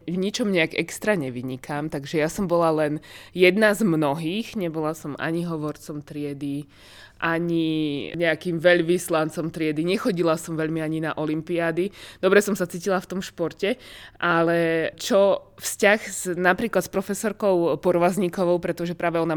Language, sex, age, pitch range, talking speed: Slovak, female, 20-39, 150-180 Hz, 145 wpm